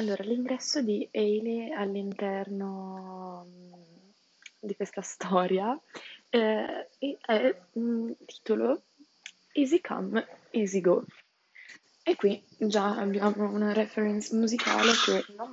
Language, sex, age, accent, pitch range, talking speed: Italian, female, 20-39, native, 190-230 Hz, 100 wpm